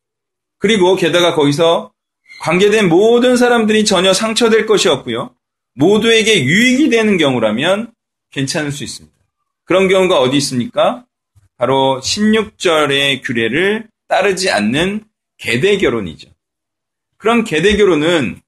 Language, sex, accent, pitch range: Korean, male, native, 140-215 Hz